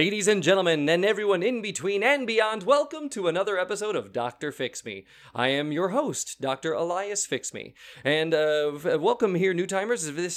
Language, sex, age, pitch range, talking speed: English, male, 30-49, 140-210 Hz, 190 wpm